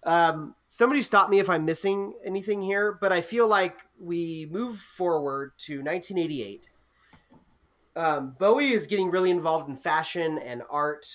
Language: English